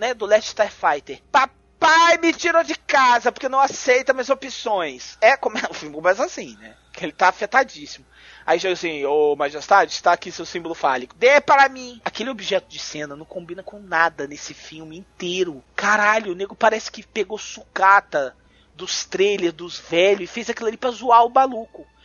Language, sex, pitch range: Portuguese, male, 180-285 Hz